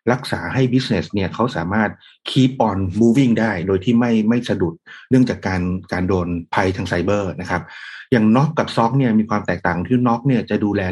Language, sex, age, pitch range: Thai, male, 30-49, 100-120 Hz